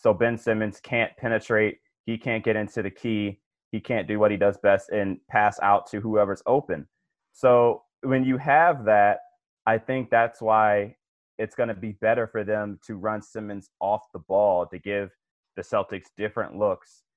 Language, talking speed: English, 180 wpm